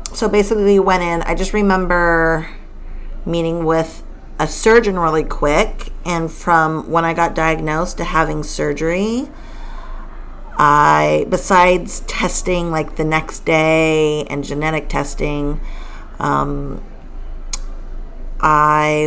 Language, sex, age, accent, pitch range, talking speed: English, female, 40-59, American, 150-175 Hz, 110 wpm